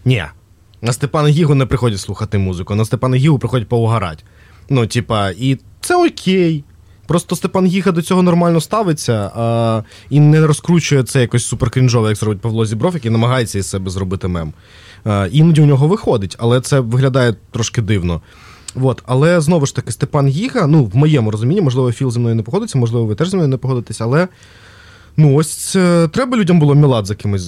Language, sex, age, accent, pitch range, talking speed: Ukrainian, male, 20-39, native, 105-155 Hz, 185 wpm